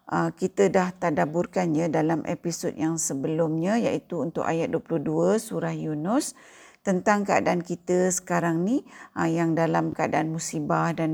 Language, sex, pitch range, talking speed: Malay, female, 170-230 Hz, 125 wpm